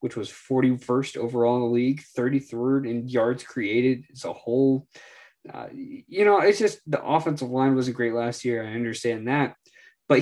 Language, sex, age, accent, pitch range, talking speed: English, male, 20-39, American, 120-155 Hz, 175 wpm